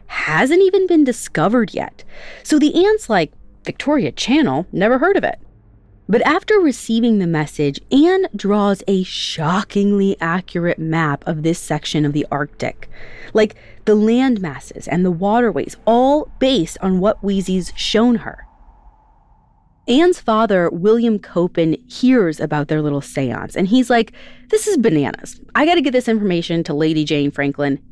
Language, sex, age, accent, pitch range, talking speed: English, female, 30-49, American, 170-255 Hz, 150 wpm